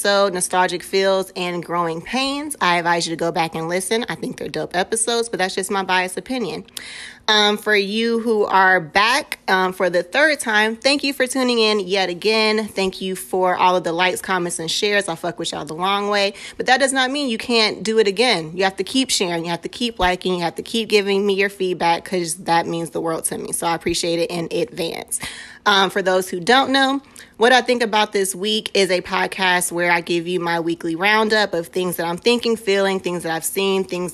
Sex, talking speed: female, 235 wpm